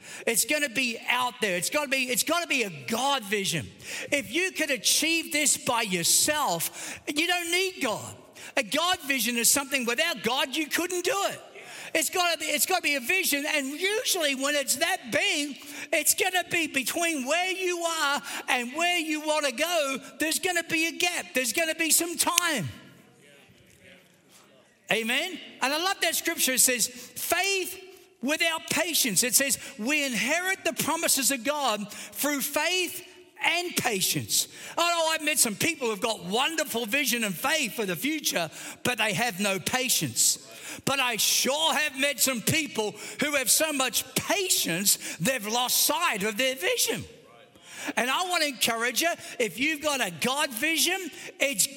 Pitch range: 240-330 Hz